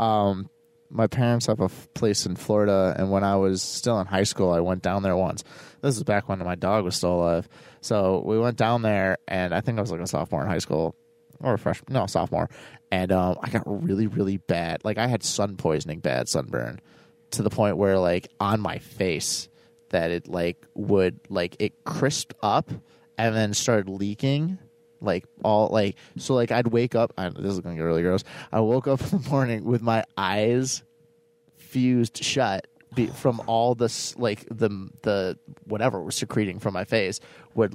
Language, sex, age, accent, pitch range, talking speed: English, male, 30-49, American, 95-125 Hz, 200 wpm